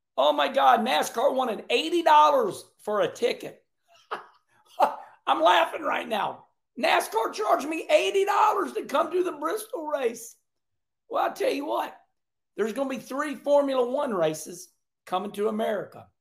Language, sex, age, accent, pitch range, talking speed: English, male, 50-69, American, 185-275 Hz, 145 wpm